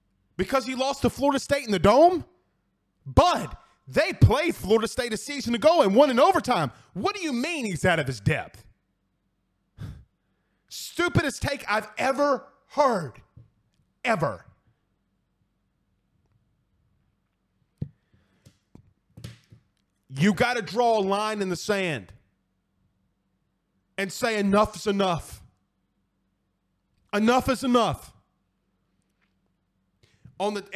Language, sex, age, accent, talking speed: English, male, 30-49, American, 105 wpm